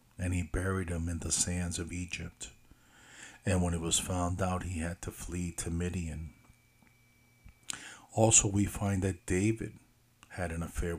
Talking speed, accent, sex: 160 wpm, American, male